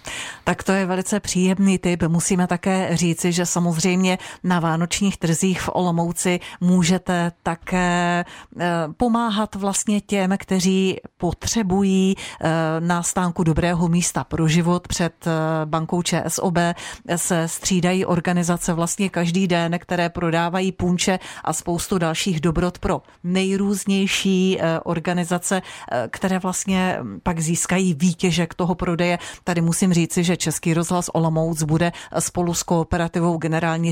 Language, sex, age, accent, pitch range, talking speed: Czech, female, 40-59, native, 170-195 Hz, 115 wpm